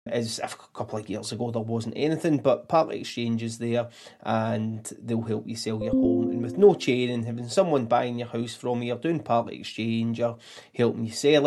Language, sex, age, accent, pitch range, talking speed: English, male, 30-49, British, 115-145 Hz, 215 wpm